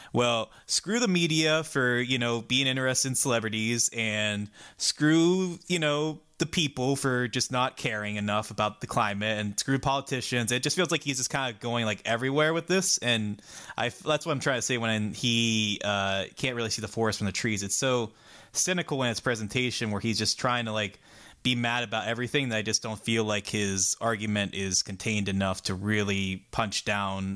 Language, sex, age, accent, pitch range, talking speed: English, male, 20-39, American, 105-130 Hz, 195 wpm